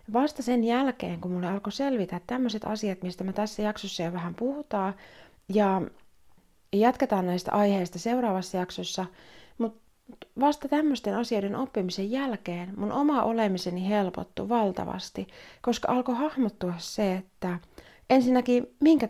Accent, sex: native, female